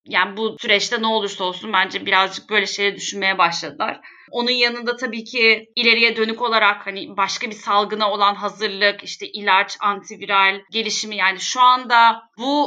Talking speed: 155 wpm